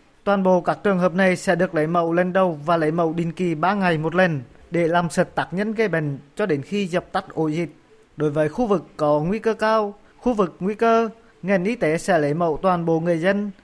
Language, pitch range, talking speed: Vietnamese, 125-180 Hz, 250 wpm